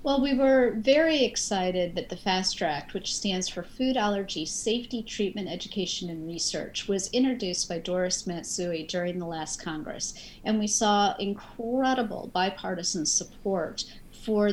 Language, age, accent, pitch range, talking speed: English, 40-59, American, 185-230 Hz, 145 wpm